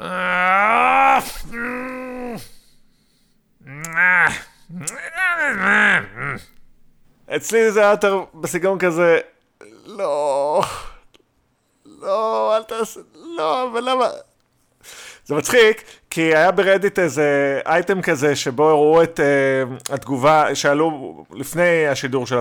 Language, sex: Hebrew, male